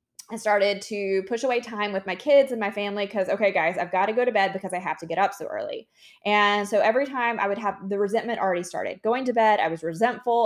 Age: 20-39